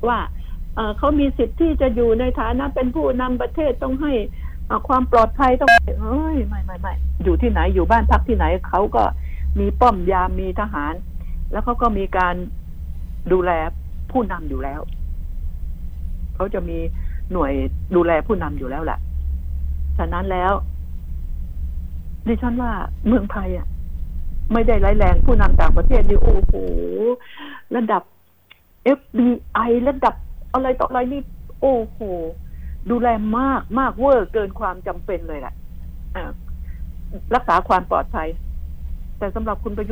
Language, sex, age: Thai, female, 60-79